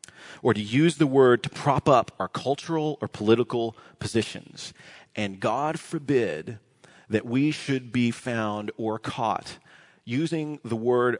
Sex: male